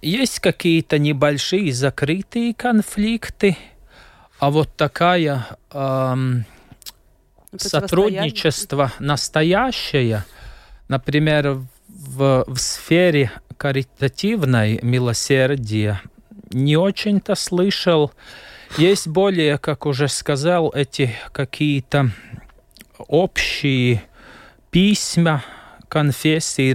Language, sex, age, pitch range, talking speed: Russian, male, 30-49, 120-160 Hz, 65 wpm